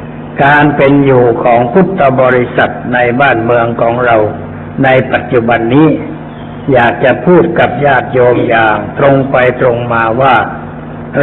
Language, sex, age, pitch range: Thai, male, 60-79, 105-140 Hz